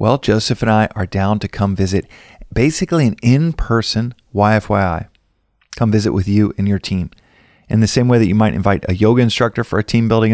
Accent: American